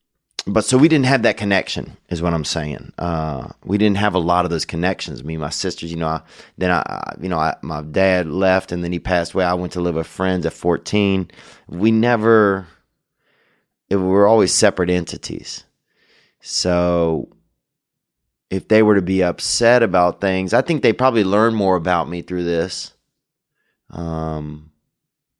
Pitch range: 80-100 Hz